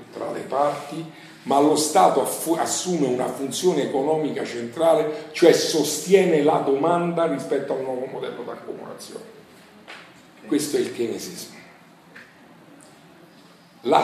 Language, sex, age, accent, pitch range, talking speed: Italian, male, 50-69, native, 130-180 Hz, 115 wpm